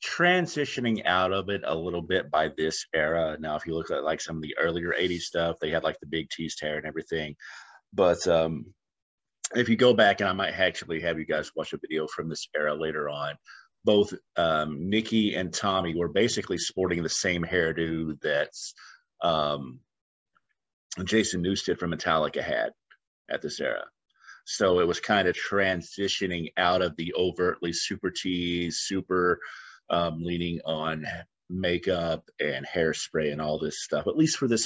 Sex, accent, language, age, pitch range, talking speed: male, American, English, 30-49, 80-100 Hz, 175 wpm